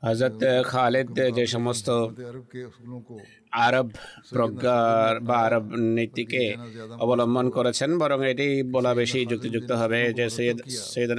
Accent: native